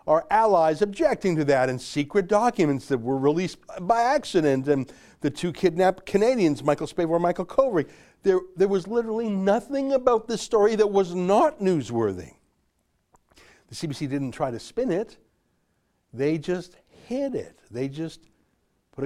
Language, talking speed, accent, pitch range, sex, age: English, 150 wpm, American, 135-200 Hz, male, 60-79